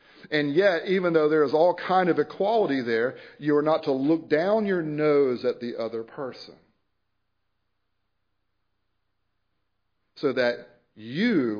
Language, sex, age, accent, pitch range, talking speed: English, male, 50-69, American, 115-165 Hz, 135 wpm